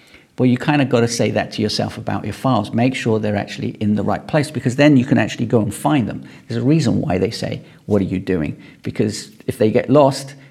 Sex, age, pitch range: male, 40-59, 105-130 Hz